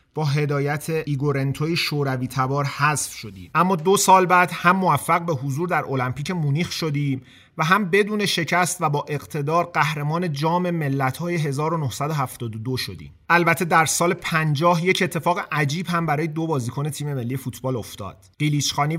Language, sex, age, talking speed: Persian, male, 30-49, 150 wpm